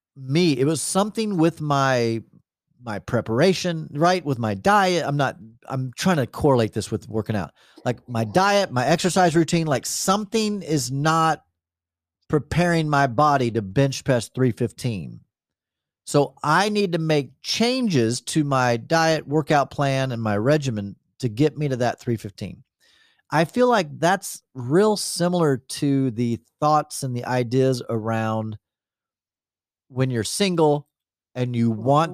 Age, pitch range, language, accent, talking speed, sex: 40-59, 115-160 Hz, English, American, 145 wpm, male